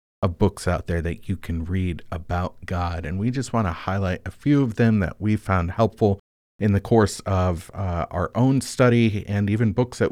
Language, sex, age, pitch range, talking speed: English, male, 40-59, 95-115 Hz, 215 wpm